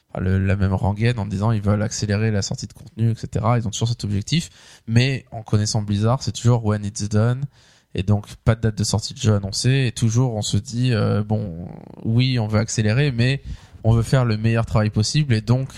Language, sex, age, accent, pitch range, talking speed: French, male, 20-39, French, 105-130 Hz, 220 wpm